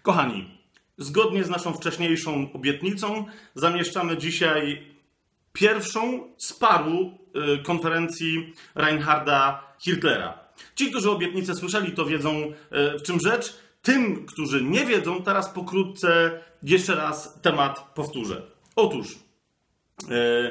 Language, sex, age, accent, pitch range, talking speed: Polish, male, 40-59, native, 150-185 Hz, 110 wpm